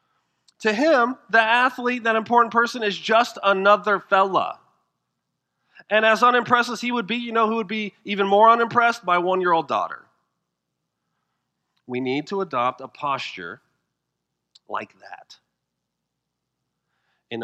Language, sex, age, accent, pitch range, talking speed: English, male, 40-59, American, 175-240 Hz, 130 wpm